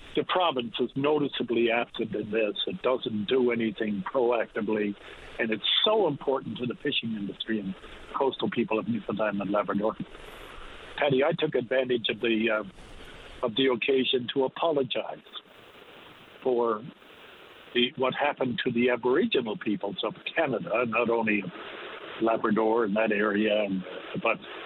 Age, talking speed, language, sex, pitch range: 60-79, 140 wpm, English, male, 110-125 Hz